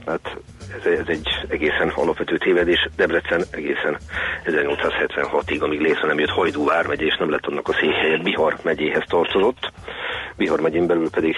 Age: 40-59